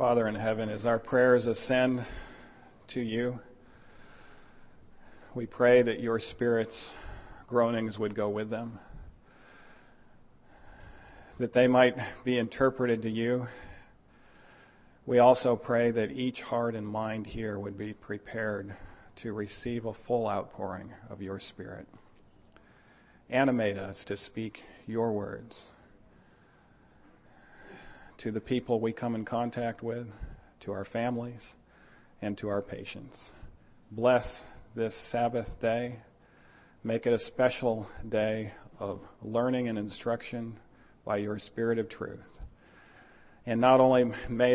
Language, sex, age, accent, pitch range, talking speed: English, male, 40-59, American, 105-120 Hz, 120 wpm